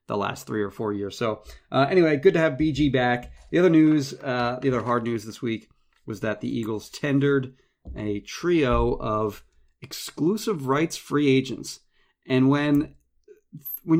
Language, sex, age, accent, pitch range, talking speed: English, male, 30-49, American, 105-140 Hz, 165 wpm